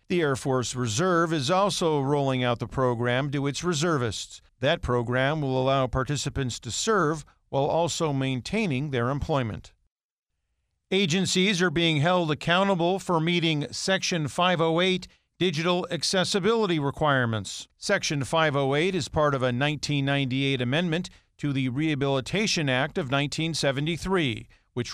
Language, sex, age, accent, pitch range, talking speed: English, male, 50-69, American, 125-165 Hz, 125 wpm